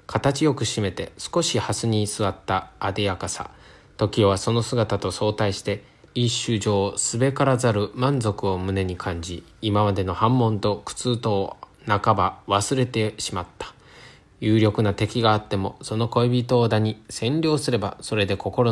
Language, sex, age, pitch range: Chinese, male, 20-39, 100-130 Hz